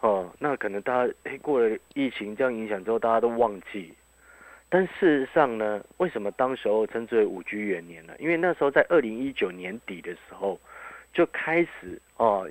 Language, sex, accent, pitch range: Chinese, male, native, 105-170 Hz